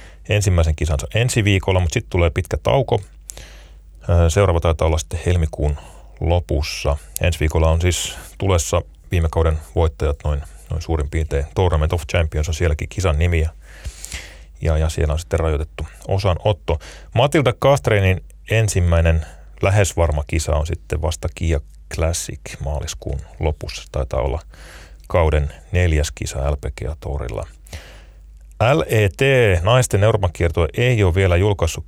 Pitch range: 75-90 Hz